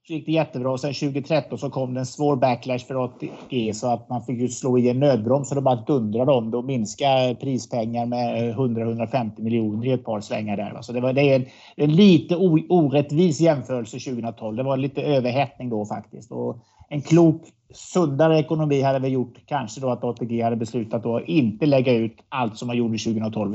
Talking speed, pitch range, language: 205 wpm, 120-150 Hz, Swedish